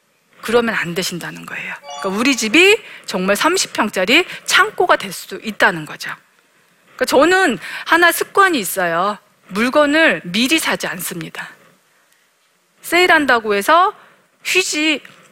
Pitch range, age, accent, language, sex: 195-315 Hz, 40-59, native, Korean, female